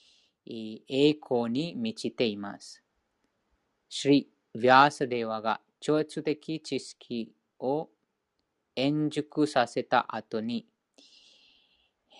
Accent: Indian